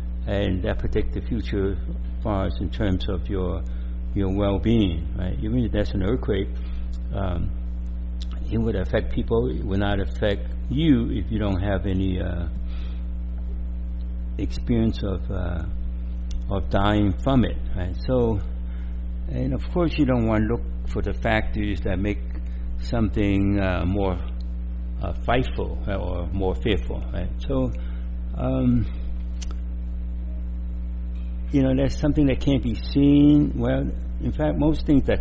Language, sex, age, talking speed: English, male, 60-79, 140 wpm